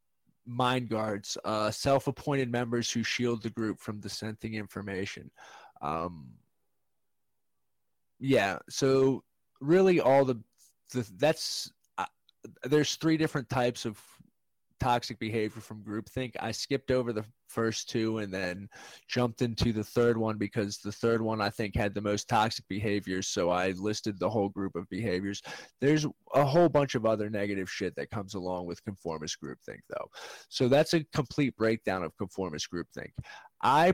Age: 20-39